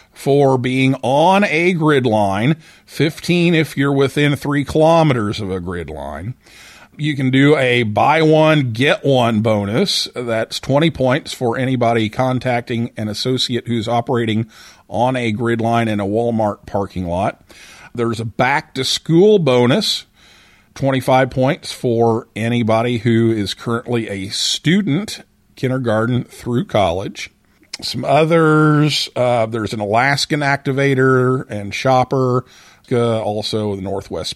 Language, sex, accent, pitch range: English, male, American, 105-130 Hz